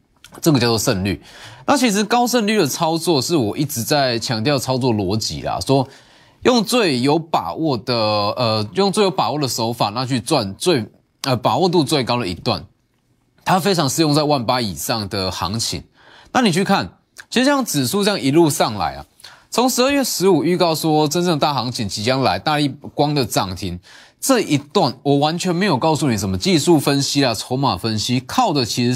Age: 20-39